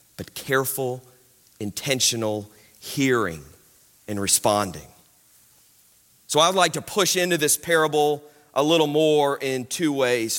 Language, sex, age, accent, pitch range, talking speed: English, male, 40-59, American, 125-160 Hz, 115 wpm